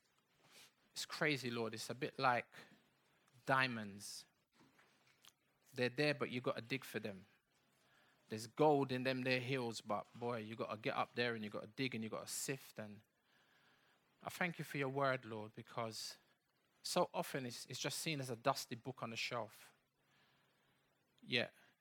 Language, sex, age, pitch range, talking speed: English, male, 20-39, 120-155 Hz, 165 wpm